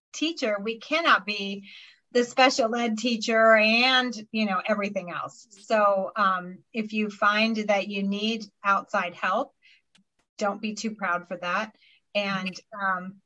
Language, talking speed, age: English, 140 wpm, 40-59